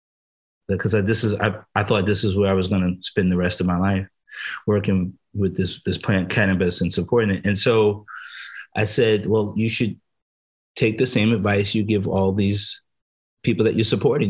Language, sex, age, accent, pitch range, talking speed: English, male, 30-49, American, 95-115 Hz, 200 wpm